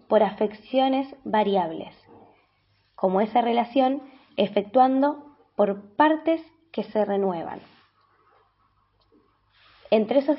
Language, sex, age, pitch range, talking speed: Spanish, female, 20-39, 195-265 Hz, 80 wpm